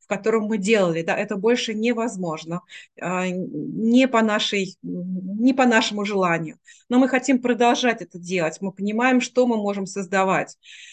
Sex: female